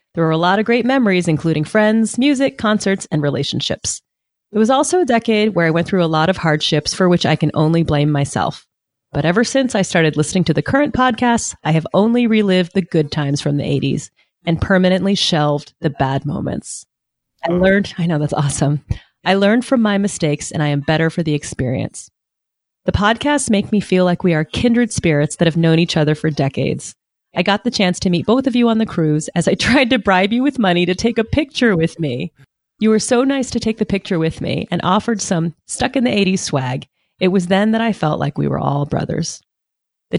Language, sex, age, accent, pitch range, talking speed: English, female, 30-49, American, 155-210 Hz, 220 wpm